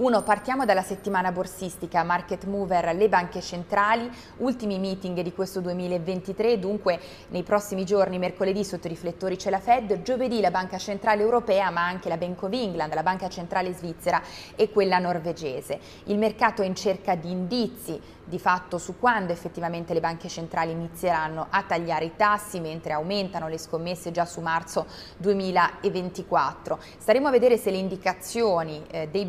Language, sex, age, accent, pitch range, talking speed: Italian, female, 30-49, native, 165-195 Hz, 160 wpm